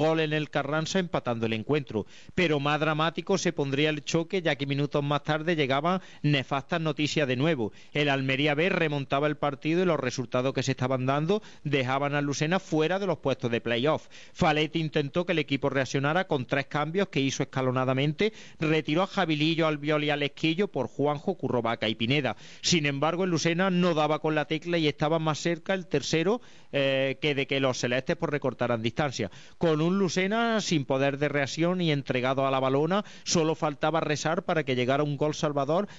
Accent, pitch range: Spanish, 135-165 Hz